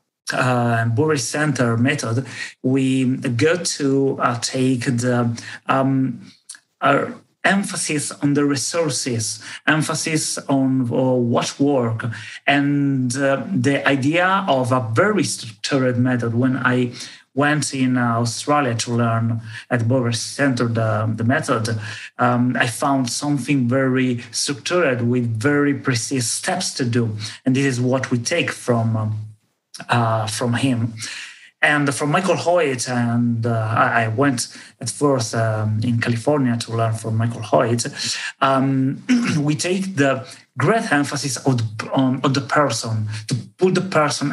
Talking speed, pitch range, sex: 130 wpm, 120-145 Hz, male